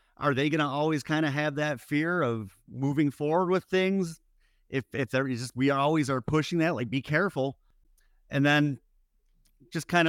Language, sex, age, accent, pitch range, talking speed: English, male, 40-59, American, 100-140 Hz, 185 wpm